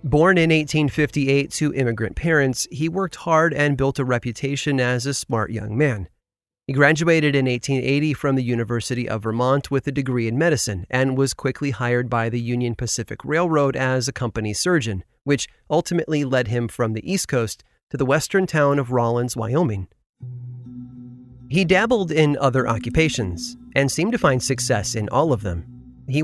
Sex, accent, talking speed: male, American, 170 wpm